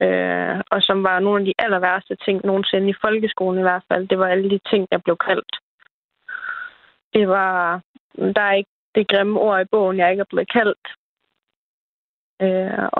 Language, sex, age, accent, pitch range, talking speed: Danish, female, 20-39, native, 190-210 Hz, 190 wpm